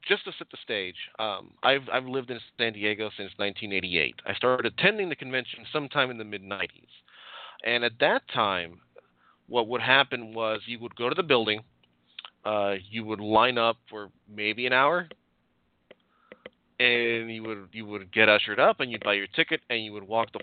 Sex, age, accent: male, 30-49, American